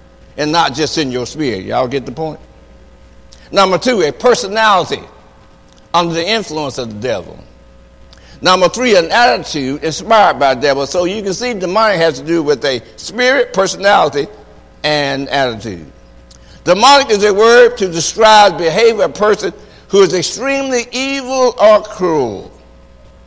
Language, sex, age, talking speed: English, male, 60-79, 150 wpm